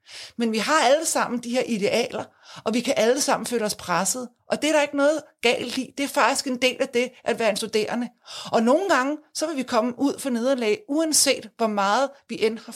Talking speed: 240 wpm